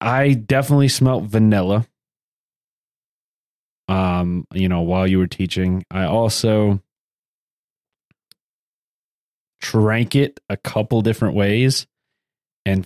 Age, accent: 20-39, American